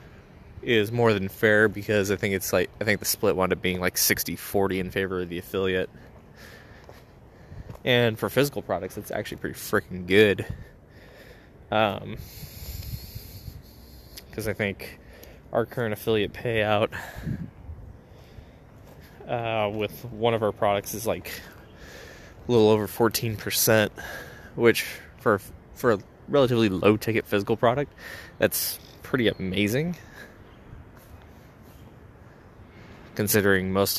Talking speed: 115 wpm